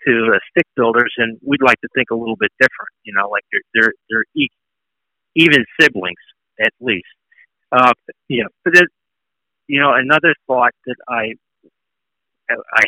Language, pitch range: English, 115-135 Hz